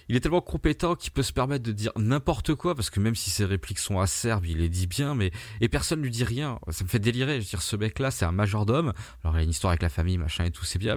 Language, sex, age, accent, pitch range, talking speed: French, male, 20-39, French, 90-115 Hz, 310 wpm